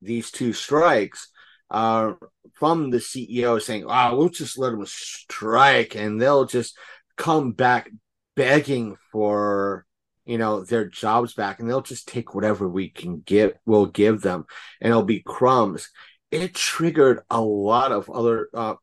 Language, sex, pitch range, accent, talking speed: English, male, 110-130 Hz, American, 155 wpm